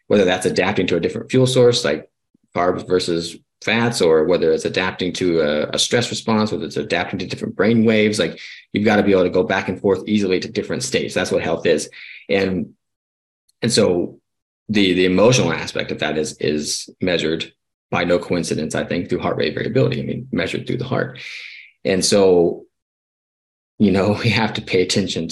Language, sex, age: English, male, 30-49